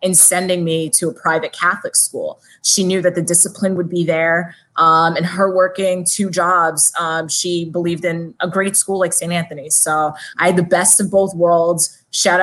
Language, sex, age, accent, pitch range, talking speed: English, female, 20-39, American, 170-190 Hz, 200 wpm